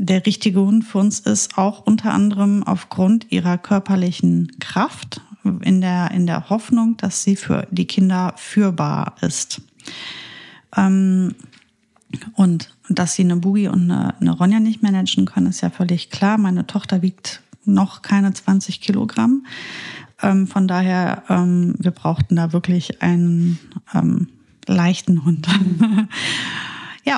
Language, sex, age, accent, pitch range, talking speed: German, female, 30-49, German, 180-210 Hz, 125 wpm